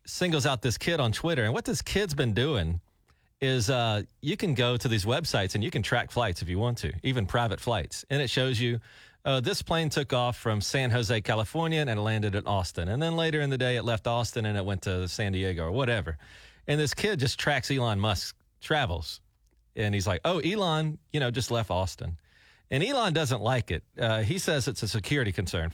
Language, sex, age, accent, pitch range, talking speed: English, male, 40-59, American, 105-140 Hz, 225 wpm